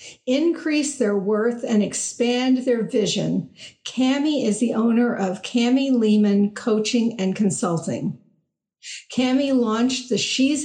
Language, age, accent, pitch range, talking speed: English, 50-69, American, 215-260 Hz, 120 wpm